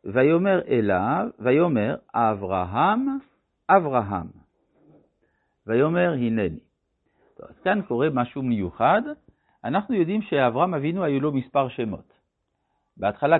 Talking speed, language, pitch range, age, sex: 95 wpm, Hebrew, 100-160 Hz, 60-79, male